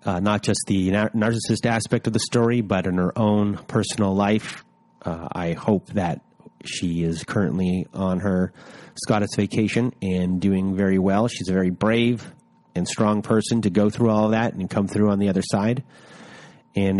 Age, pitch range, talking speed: 30-49, 95-115 Hz, 175 wpm